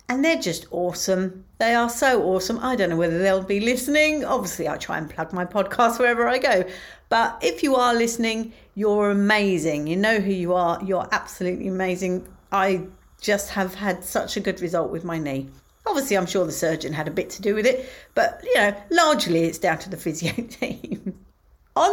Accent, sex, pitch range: British, female, 190-245 Hz